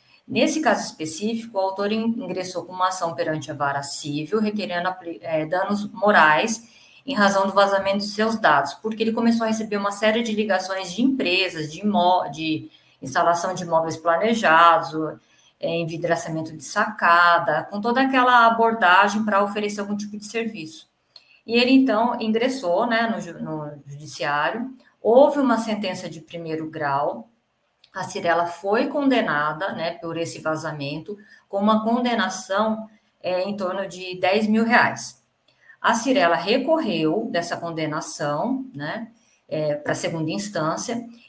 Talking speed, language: 140 wpm, Portuguese